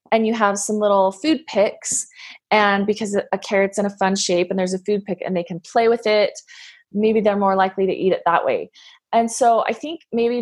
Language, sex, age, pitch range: English, female, 20-39, 185-235 Hz